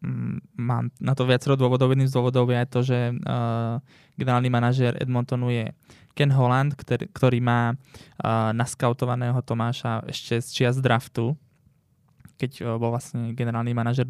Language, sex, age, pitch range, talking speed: Slovak, male, 20-39, 120-135 Hz, 145 wpm